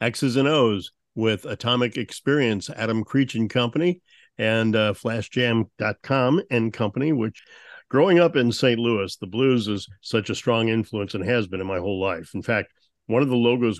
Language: English